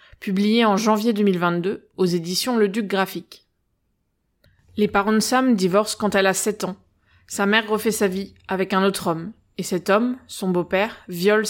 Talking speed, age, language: 175 wpm, 20-39, French